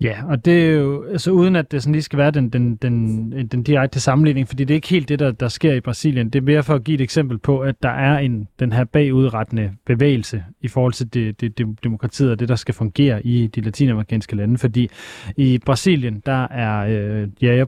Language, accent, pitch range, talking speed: Danish, native, 115-145 Hz, 235 wpm